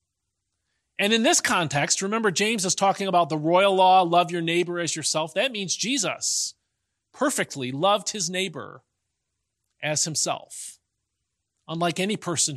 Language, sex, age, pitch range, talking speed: English, male, 30-49, 145-225 Hz, 140 wpm